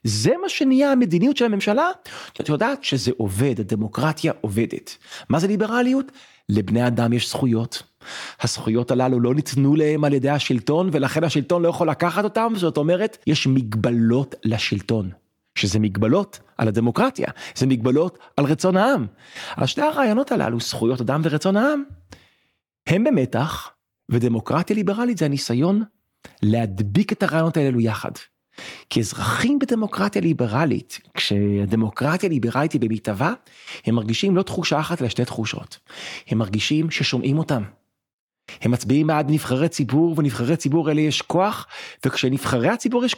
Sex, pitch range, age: male, 115-165 Hz, 40-59